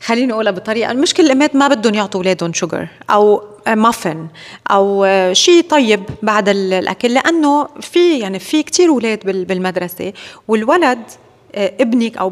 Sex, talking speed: female, 135 wpm